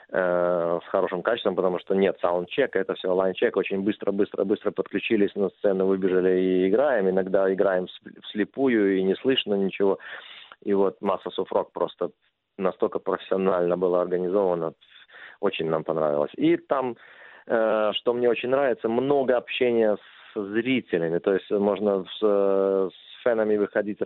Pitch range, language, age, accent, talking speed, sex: 90-105 Hz, Russian, 30-49, native, 130 wpm, male